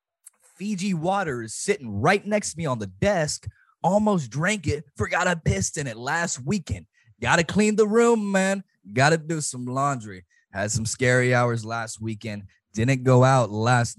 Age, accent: 20-39, American